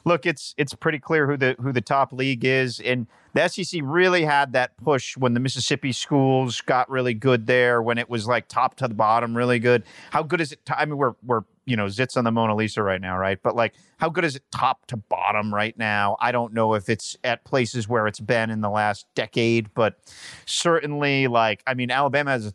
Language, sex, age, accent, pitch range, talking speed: English, male, 40-59, American, 110-135 Hz, 235 wpm